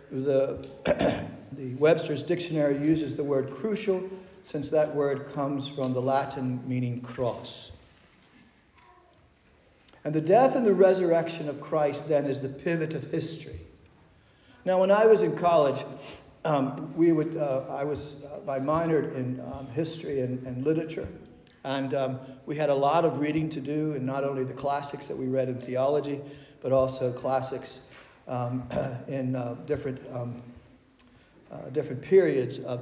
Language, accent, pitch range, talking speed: English, American, 130-155 Hz, 155 wpm